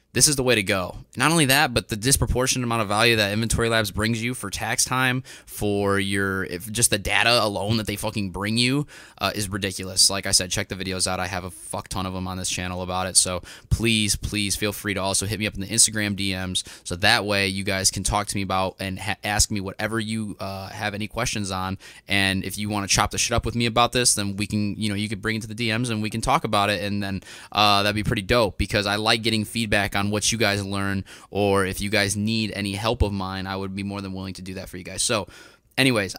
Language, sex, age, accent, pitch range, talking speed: English, male, 20-39, American, 95-105 Hz, 270 wpm